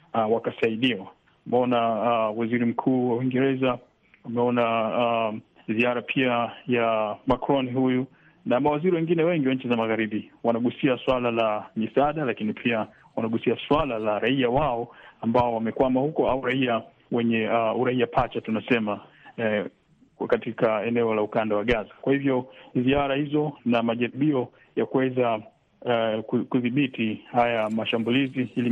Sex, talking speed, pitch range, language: male, 130 wpm, 115-130 Hz, Swahili